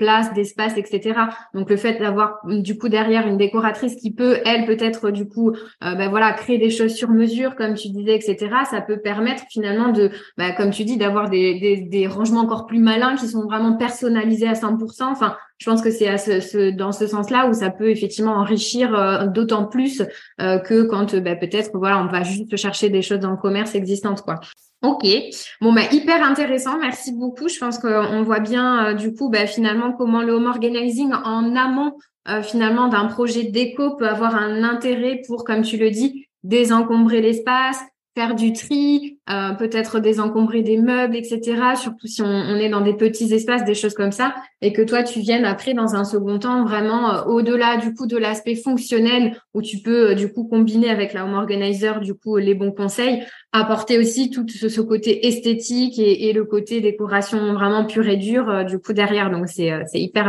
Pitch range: 205-235 Hz